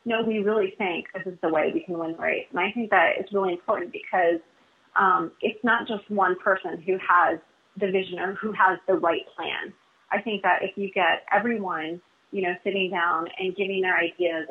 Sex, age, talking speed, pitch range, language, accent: female, 30-49, 225 wpm, 175-205 Hz, English, American